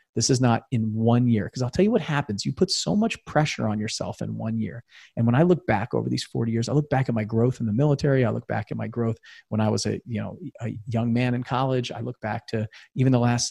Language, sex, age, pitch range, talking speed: English, male, 40-59, 110-130 Hz, 285 wpm